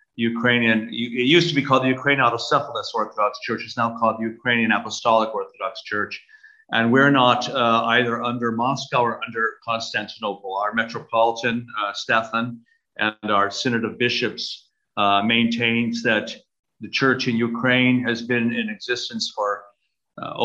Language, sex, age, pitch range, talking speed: English, male, 50-69, 115-130 Hz, 150 wpm